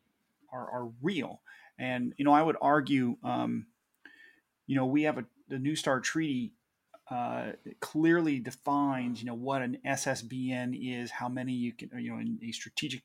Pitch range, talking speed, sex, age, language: 120-145 Hz, 170 wpm, male, 30-49, English